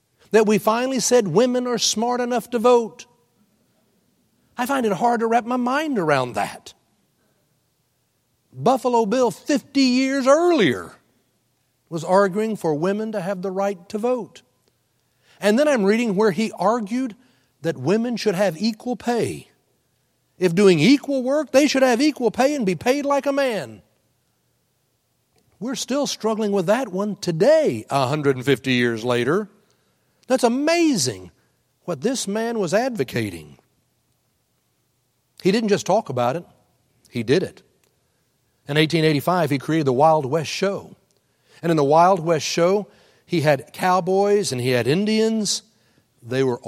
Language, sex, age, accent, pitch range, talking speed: English, male, 60-79, American, 155-235 Hz, 145 wpm